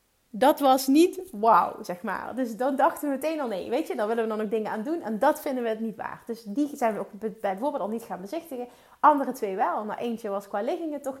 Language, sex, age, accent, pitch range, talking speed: Dutch, female, 30-49, Dutch, 215-290 Hz, 270 wpm